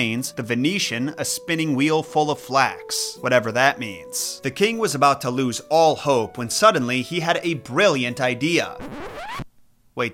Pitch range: 125-160 Hz